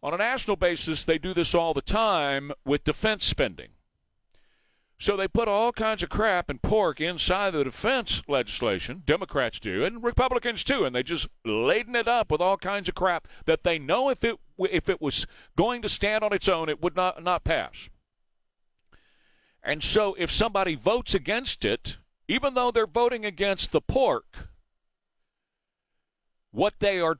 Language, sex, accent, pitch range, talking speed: English, male, American, 145-220 Hz, 170 wpm